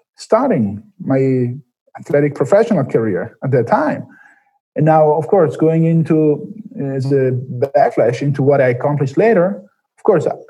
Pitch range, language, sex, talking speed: 135-160 Hz, English, male, 130 wpm